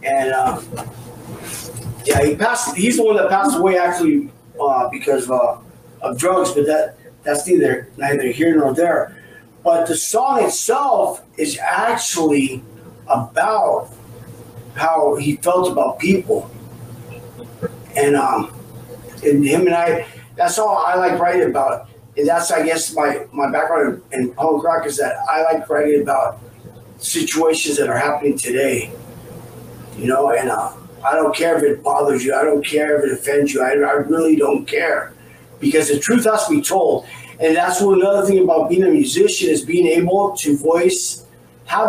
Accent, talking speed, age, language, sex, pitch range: American, 165 wpm, 40-59, English, male, 145-195 Hz